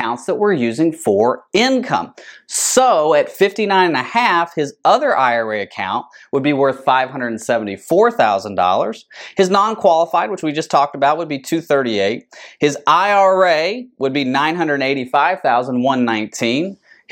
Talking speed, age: 130 wpm, 30-49